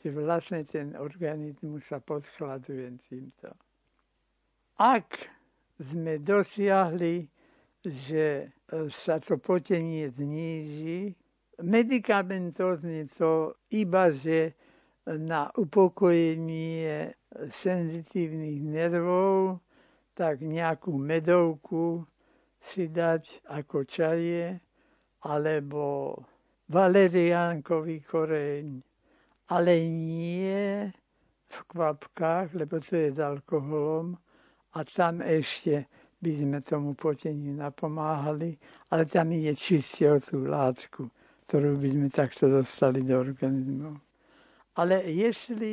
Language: Slovak